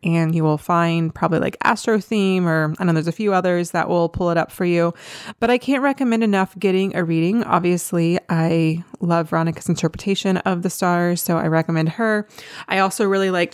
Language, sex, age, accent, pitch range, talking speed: English, female, 20-39, American, 165-195 Hz, 205 wpm